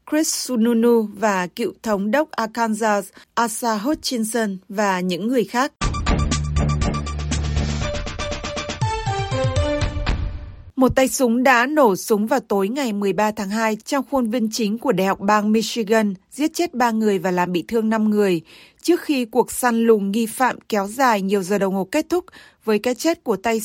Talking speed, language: 160 wpm, Vietnamese